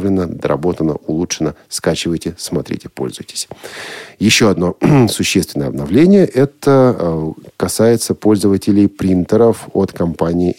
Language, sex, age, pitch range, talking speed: Russian, male, 50-69, 90-120 Hz, 85 wpm